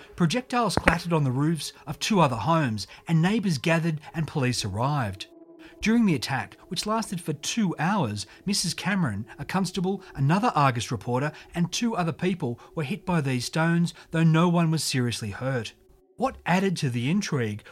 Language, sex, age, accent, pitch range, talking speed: English, male, 30-49, Australian, 140-190 Hz, 170 wpm